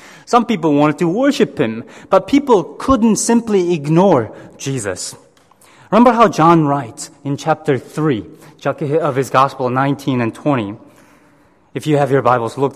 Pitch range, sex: 140-195 Hz, male